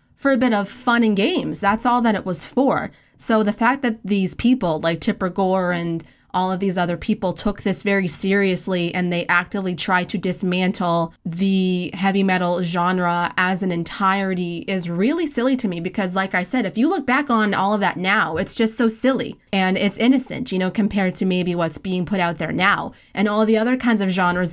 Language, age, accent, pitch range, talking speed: English, 20-39, American, 185-230 Hz, 215 wpm